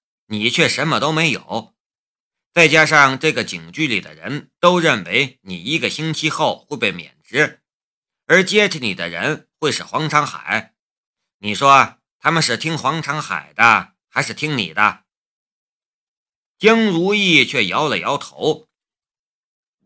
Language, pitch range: Chinese, 130-175 Hz